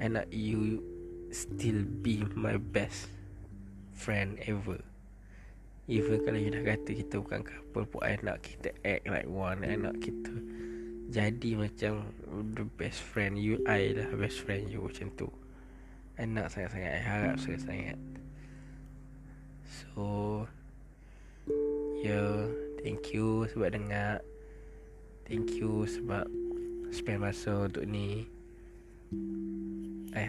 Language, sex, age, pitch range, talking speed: Malay, male, 20-39, 100-115 Hz, 120 wpm